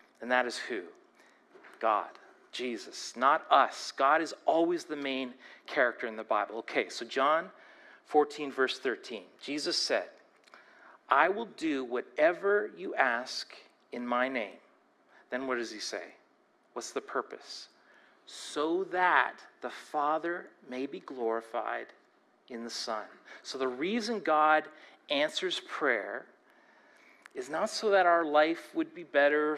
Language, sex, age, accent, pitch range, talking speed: English, male, 40-59, American, 130-210 Hz, 135 wpm